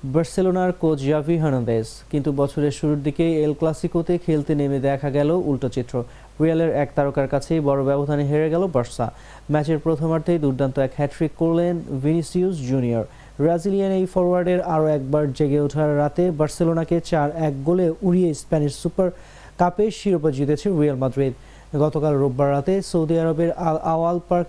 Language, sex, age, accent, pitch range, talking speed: English, male, 30-49, Indian, 140-180 Hz, 120 wpm